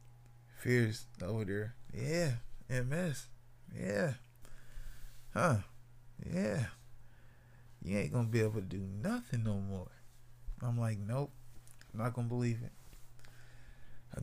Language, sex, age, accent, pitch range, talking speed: English, male, 20-39, American, 115-120 Hz, 120 wpm